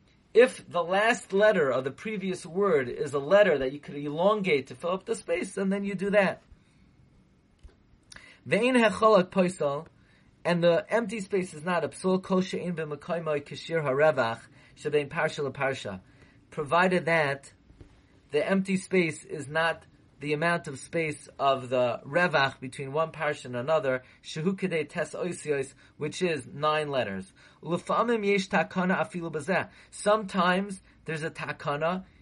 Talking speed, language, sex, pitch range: 110 wpm, English, male, 145-185 Hz